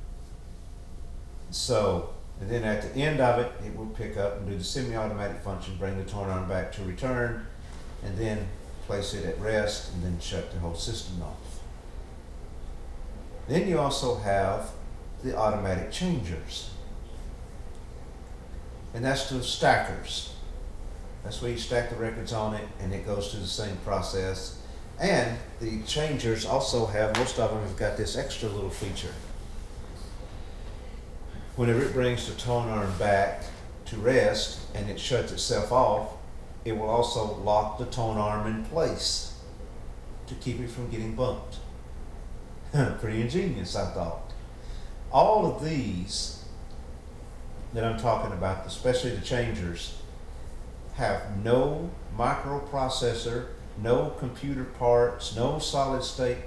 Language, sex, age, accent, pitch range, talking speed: English, male, 50-69, American, 85-120 Hz, 140 wpm